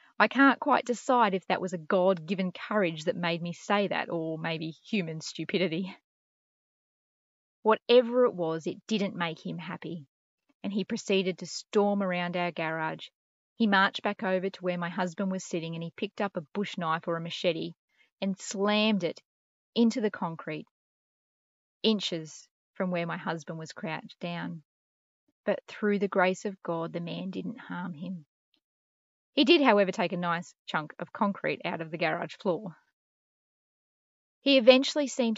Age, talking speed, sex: 20-39, 165 wpm, female